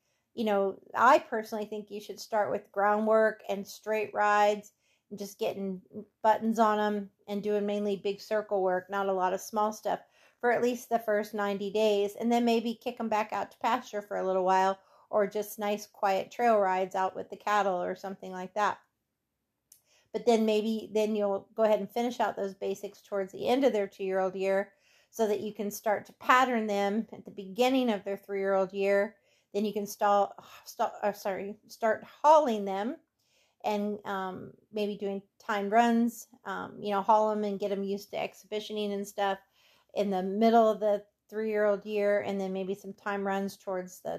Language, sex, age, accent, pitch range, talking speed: English, female, 40-59, American, 195-220 Hz, 190 wpm